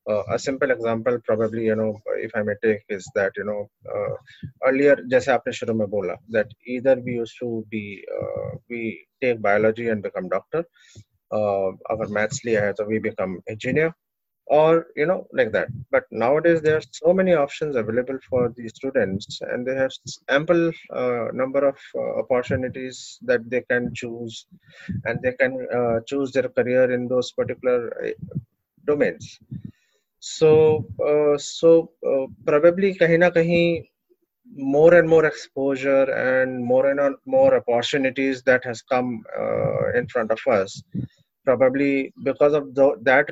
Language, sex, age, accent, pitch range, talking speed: English, male, 20-39, Indian, 120-155 Hz, 150 wpm